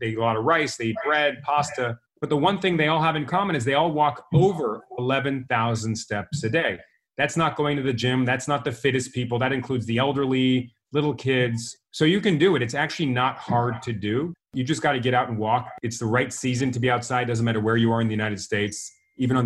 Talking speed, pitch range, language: 250 wpm, 115-145 Hz, English